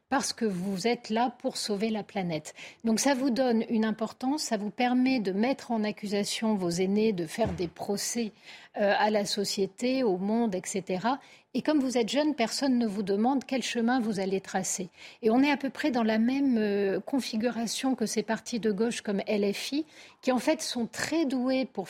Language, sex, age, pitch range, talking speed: French, female, 50-69, 200-255 Hz, 200 wpm